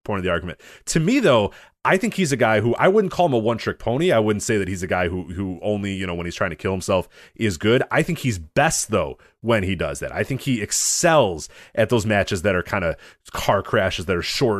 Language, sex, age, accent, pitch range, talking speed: English, male, 30-49, American, 95-130 Hz, 265 wpm